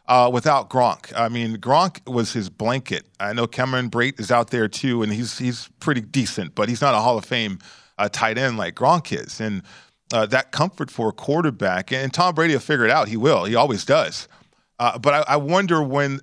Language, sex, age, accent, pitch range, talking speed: English, male, 40-59, American, 110-140 Hz, 220 wpm